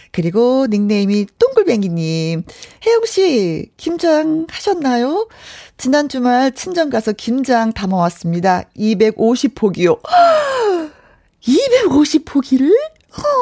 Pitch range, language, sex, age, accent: 200-290 Hz, Korean, female, 40-59, native